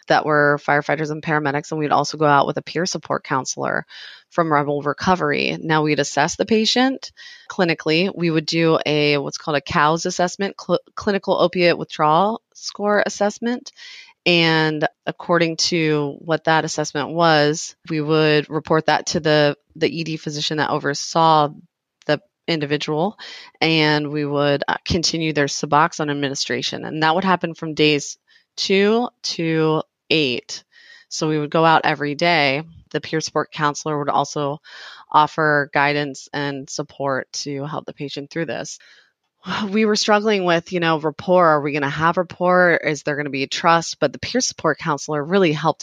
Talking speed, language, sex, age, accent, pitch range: 165 wpm, English, female, 30-49, American, 150-175 Hz